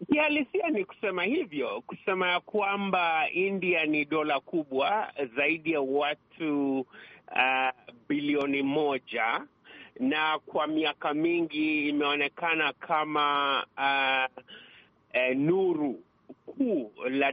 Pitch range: 140-180 Hz